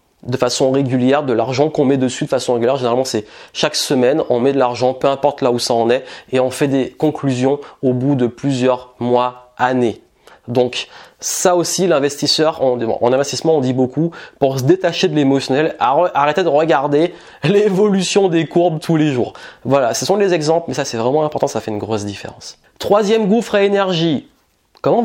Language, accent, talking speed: French, French, 200 wpm